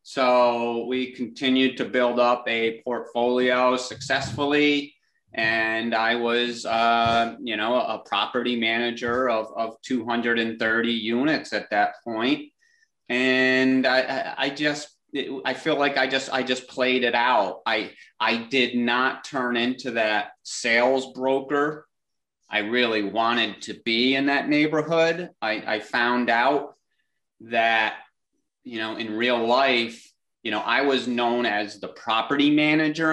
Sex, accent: male, American